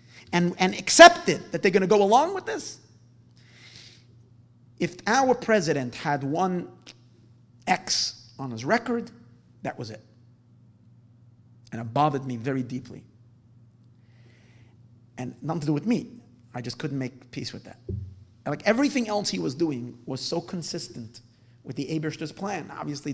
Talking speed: 145 wpm